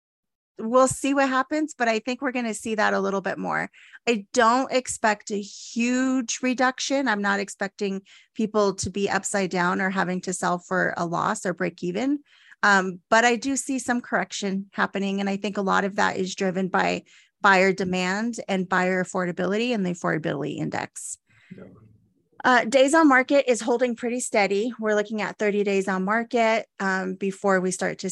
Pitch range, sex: 185-230 Hz, female